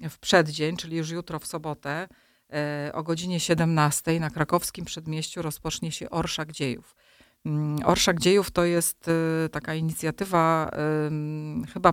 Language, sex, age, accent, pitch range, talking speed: Polish, female, 40-59, native, 155-170 Hz, 120 wpm